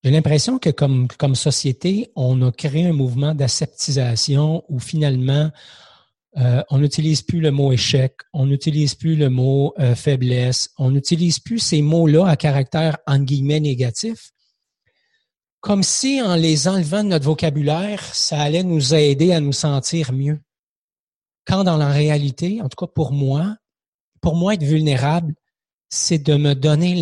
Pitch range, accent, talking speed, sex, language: 130-160 Hz, Canadian, 160 wpm, male, French